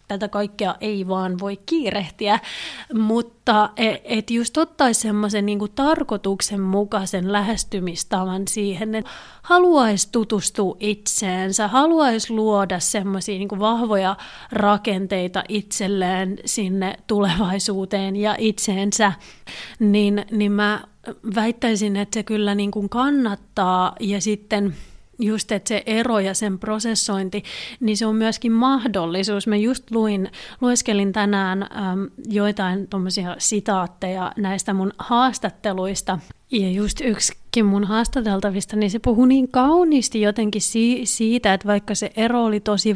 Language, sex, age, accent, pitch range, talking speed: Finnish, female, 30-49, native, 195-225 Hz, 115 wpm